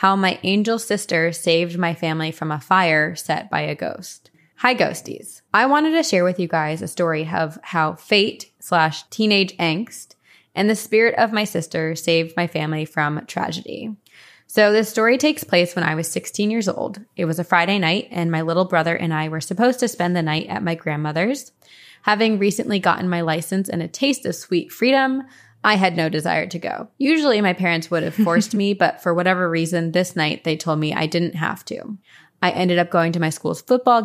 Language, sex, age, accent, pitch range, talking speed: English, female, 20-39, American, 165-210 Hz, 210 wpm